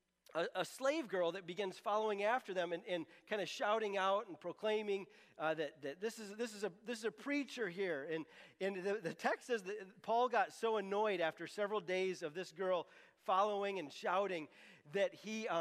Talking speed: 180 wpm